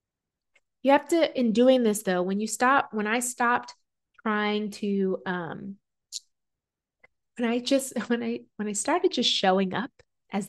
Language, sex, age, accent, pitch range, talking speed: English, female, 20-39, American, 200-250 Hz, 160 wpm